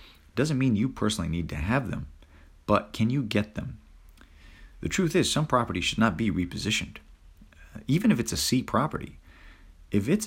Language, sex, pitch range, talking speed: English, male, 80-105 Hz, 175 wpm